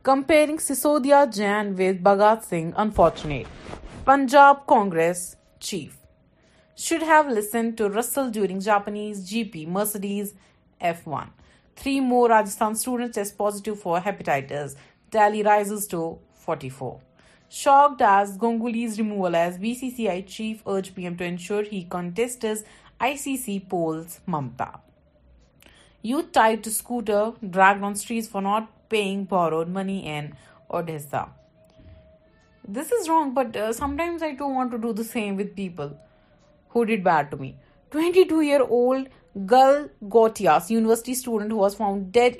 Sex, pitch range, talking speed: female, 175-235 Hz, 130 wpm